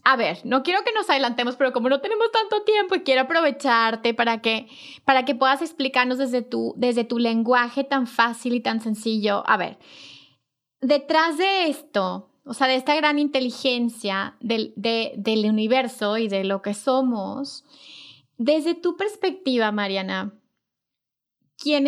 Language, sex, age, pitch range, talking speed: Spanish, female, 20-39, 235-285 Hz, 150 wpm